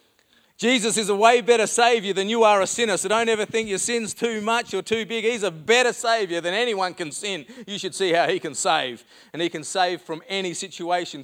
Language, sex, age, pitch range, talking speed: English, male, 30-49, 185-240 Hz, 235 wpm